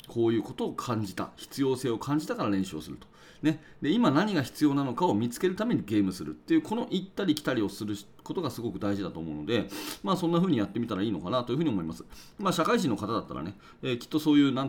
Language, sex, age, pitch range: Japanese, male, 40-59, 100-155 Hz